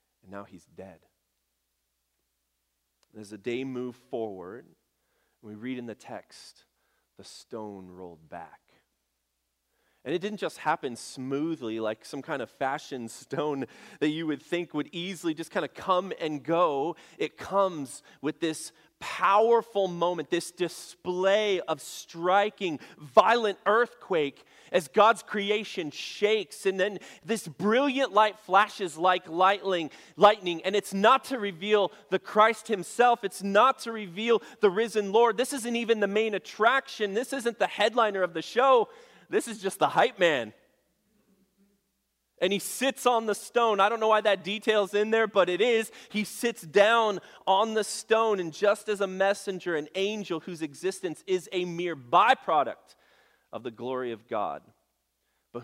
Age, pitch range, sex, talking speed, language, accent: 30-49, 130-210 Hz, male, 155 wpm, English, American